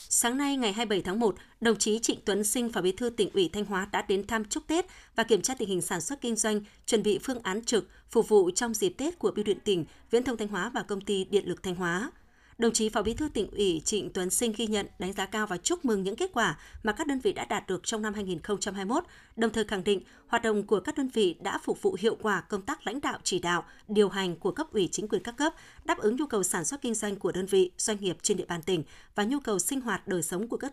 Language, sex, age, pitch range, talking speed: Vietnamese, female, 20-39, 195-270 Hz, 280 wpm